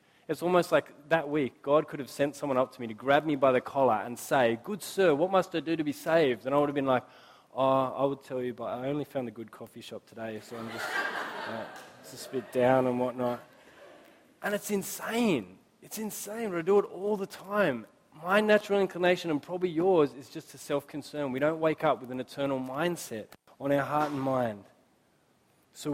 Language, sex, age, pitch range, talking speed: English, male, 20-39, 130-165 Hz, 220 wpm